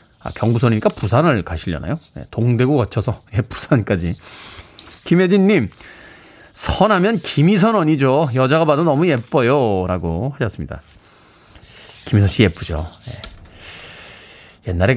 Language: Korean